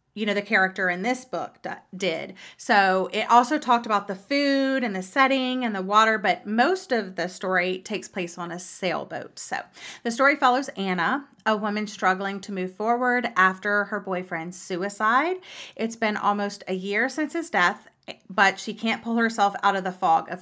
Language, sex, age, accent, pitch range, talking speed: English, female, 30-49, American, 190-245 Hz, 190 wpm